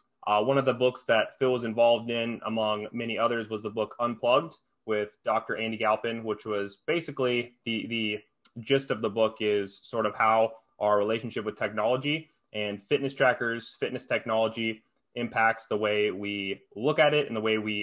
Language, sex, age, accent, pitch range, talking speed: English, male, 20-39, American, 105-125 Hz, 180 wpm